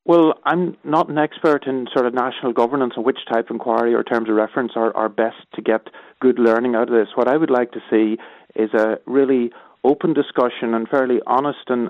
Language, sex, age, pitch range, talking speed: English, male, 30-49, 115-135 Hz, 220 wpm